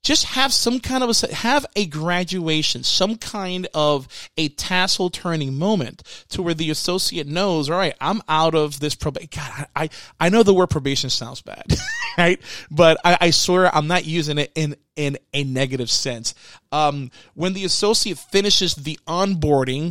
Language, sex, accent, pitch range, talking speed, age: English, male, American, 140-185 Hz, 175 wpm, 30-49